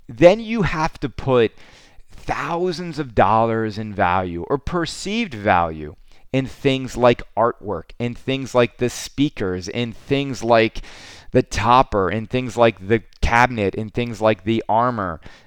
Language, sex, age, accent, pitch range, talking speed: English, male, 30-49, American, 105-135 Hz, 145 wpm